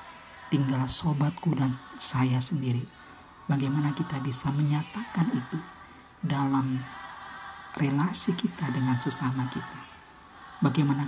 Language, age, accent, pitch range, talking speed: Indonesian, 50-69, native, 135-170 Hz, 90 wpm